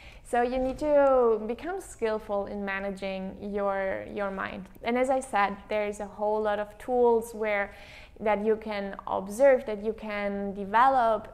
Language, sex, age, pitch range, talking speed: English, female, 20-39, 200-235 Hz, 160 wpm